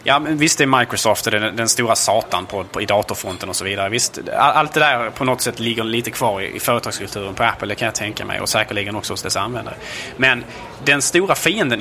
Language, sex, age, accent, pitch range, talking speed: Swedish, male, 30-49, Norwegian, 105-135 Hz, 240 wpm